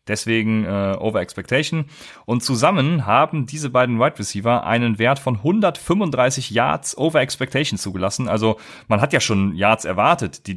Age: 30-49